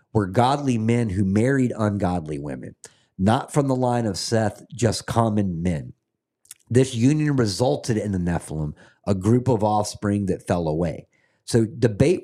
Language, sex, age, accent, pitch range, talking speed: English, male, 50-69, American, 100-125 Hz, 150 wpm